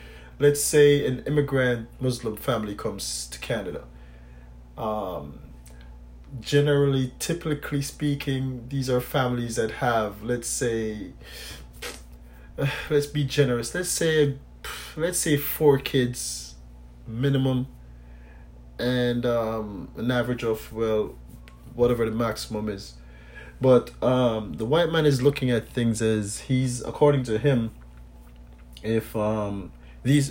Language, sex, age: English, male, 30-49